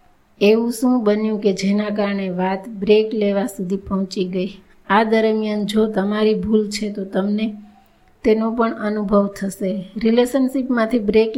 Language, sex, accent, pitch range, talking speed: Gujarati, female, native, 205-225 Hz, 110 wpm